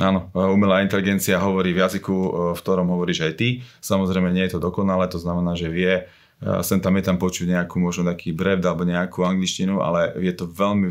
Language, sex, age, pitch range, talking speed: Slovak, male, 30-49, 90-95 Hz, 185 wpm